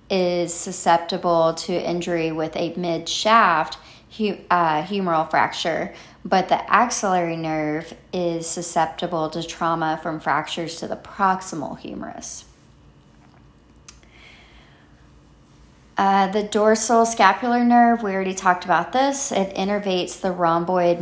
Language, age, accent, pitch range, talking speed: English, 30-49, American, 165-200 Hz, 105 wpm